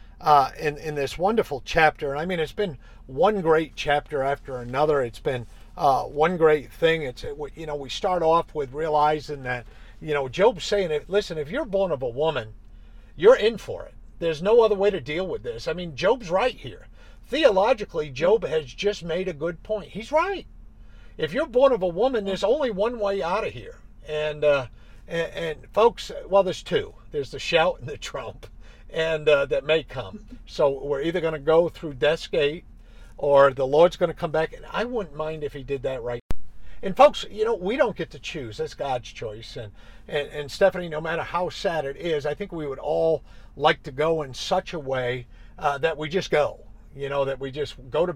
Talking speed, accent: 215 wpm, American